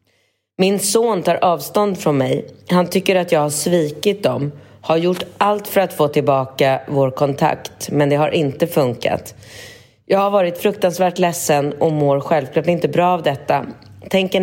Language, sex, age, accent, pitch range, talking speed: Swedish, female, 30-49, native, 140-180 Hz, 165 wpm